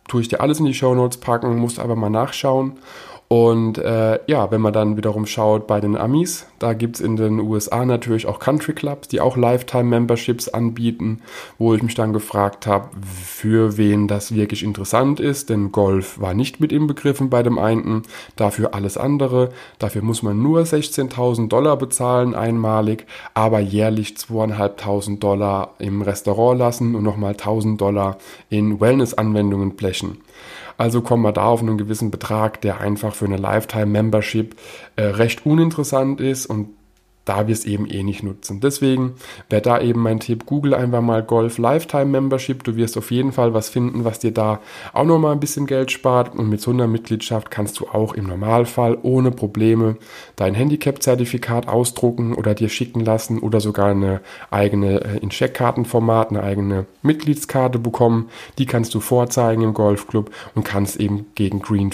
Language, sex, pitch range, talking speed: German, male, 105-125 Hz, 170 wpm